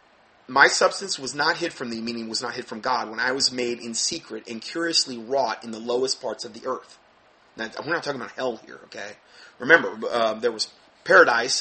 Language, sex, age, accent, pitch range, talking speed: English, male, 30-49, American, 115-140 Hz, 215 wpm